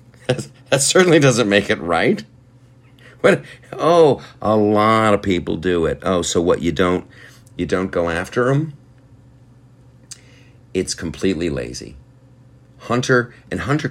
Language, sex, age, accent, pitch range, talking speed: English, male, 50-69, American, 85-125 Hz, 130 wpm